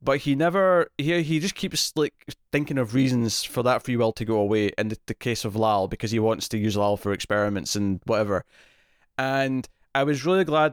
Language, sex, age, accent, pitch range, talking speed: English, male, 20-39, British, 110-140 Hz, 220 wpm